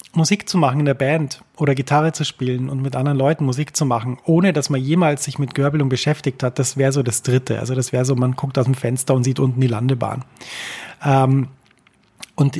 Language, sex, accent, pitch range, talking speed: German, male, German, 125-145 Hz, 220 wpm